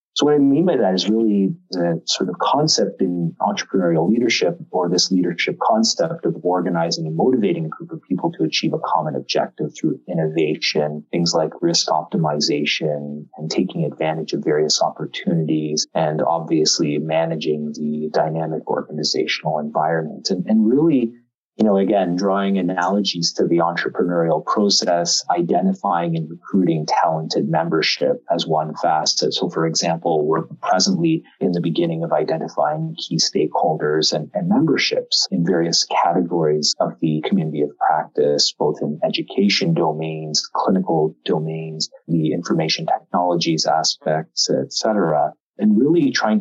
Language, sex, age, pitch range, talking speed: English, male, 30-49, 80-100 Hz, 140 wpm